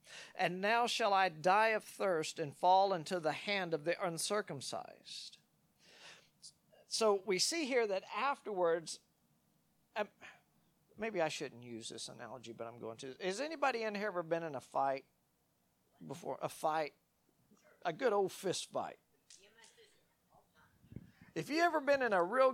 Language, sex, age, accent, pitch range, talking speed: English, male, 50-69, American, 160-225 Hz, 145 wpm